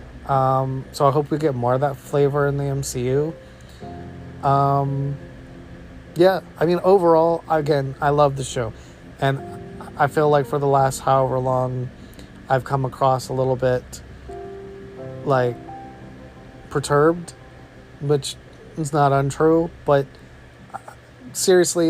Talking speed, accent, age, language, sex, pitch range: 130 wpm, American, 30-49, English, male, 115-150 Hz